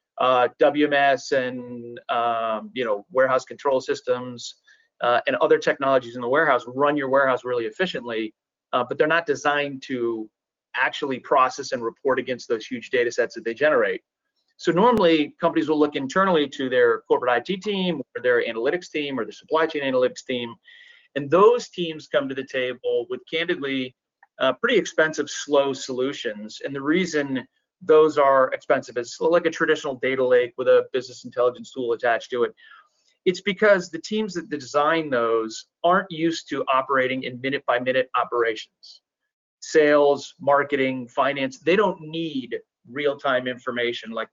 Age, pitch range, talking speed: 30-49, 130-190 Hz, 160 wpm